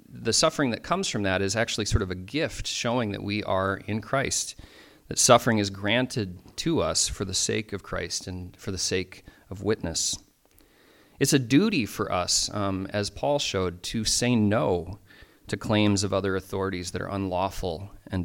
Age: 30-49